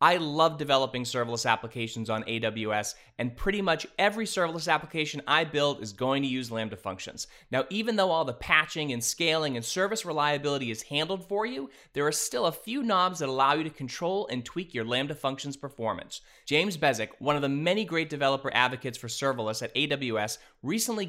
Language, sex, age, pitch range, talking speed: English, male, 20-39, 125-175 Hz, 190 wpm